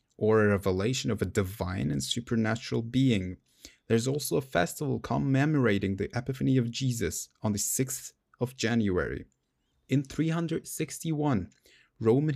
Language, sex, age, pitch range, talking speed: English, male, 20-39, 105-135 Hz, 125 wpm